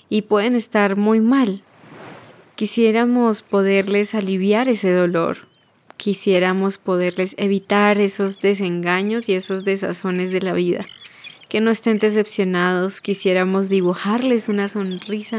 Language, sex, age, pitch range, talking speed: Spanish, female, 20-39, 185-215 Hz, 115 wpm